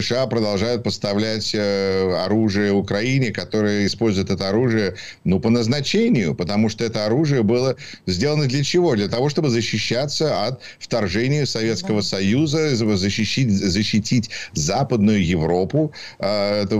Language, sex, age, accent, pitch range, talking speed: Ukrainian, male, 50-69, native, 100-125 Hz, 120 wpm